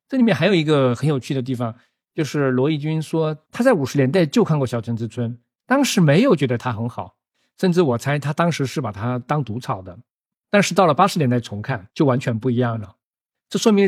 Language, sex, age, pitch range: Chinese, male, 50-69, 120-160 Hz